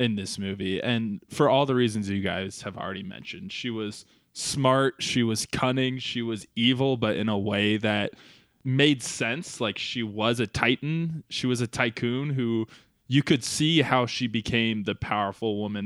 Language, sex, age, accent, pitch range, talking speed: English, male, 20-39, American, 105-130 Hz, 180 wpm